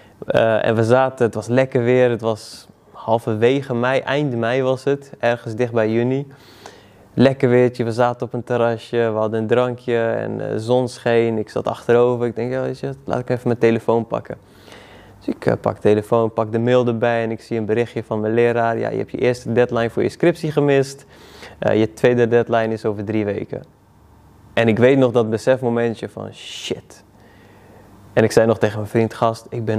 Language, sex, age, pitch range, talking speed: Dutch, male, 20-39, 105-125 Hz, 205 wpm